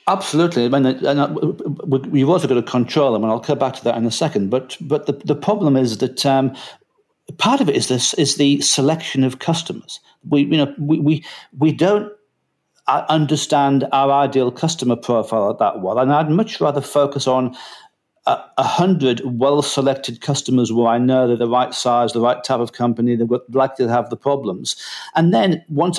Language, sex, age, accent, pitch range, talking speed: English, male, 50-69, British, 125-150 Hz, 195 wpm